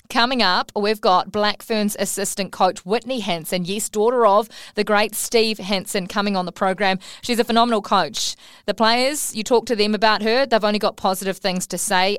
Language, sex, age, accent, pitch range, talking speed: English, female, 20-39, Australian, 185-220 Hz, 195 wpm